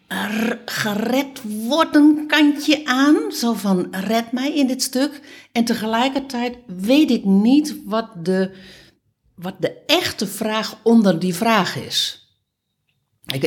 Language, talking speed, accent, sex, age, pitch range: Dutch, 120 wpm, Dutch, female, 60-79, 145-195 Hz